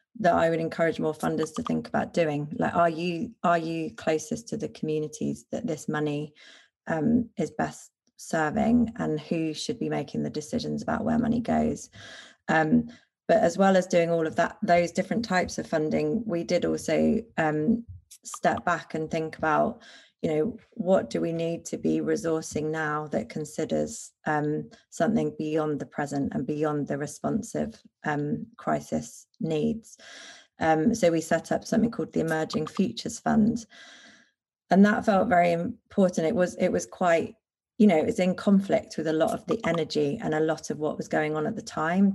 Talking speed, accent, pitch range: 180 wpm, British, 155-225 Hz